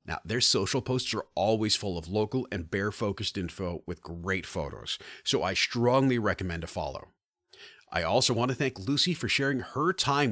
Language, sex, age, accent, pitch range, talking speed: English, male, 40-59, American, 95-135 Hz, 180 wpm